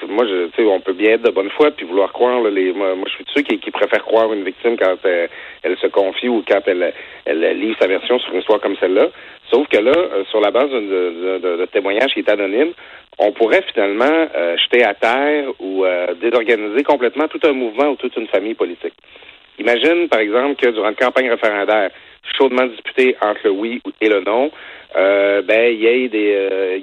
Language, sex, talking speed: French, male, 215 wpm